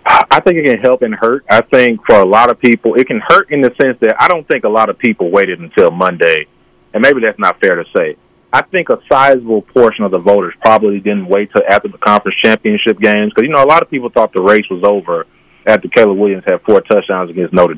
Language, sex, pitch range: English, male, 100-135 Hz